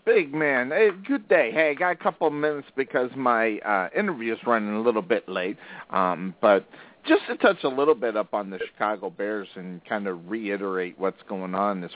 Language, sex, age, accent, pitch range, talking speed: English, male, 50-69, American, 95-120 Hz, 210 wpm